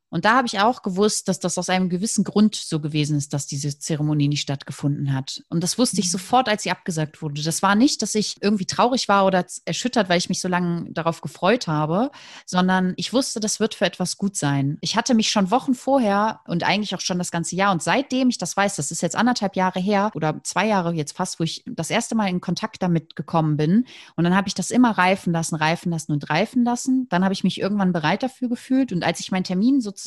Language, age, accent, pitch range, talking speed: German, 30-49, German, 165-205 Hz, 245 wpm